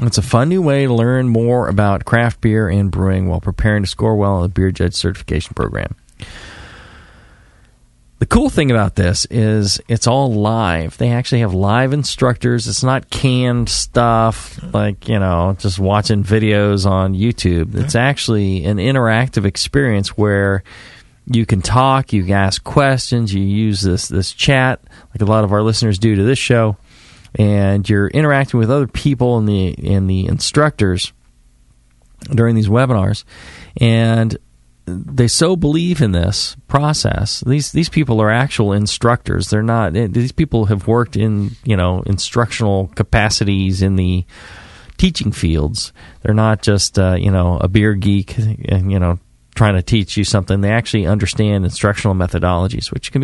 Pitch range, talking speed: 95-120 Hz, 160 wpm